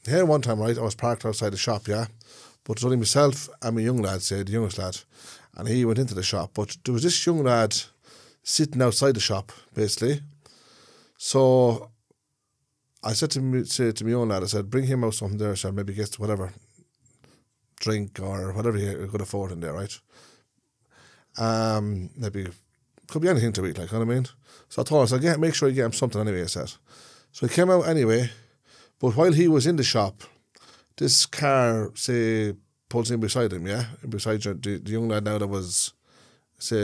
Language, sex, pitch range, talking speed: English, male, 105-135 Hz, 210 wpm